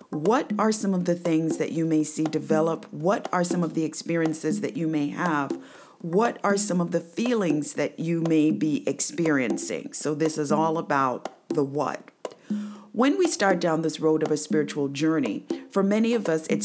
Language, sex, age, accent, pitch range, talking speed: English, female, 50-69, American, 155-200 Hz, 195 wpm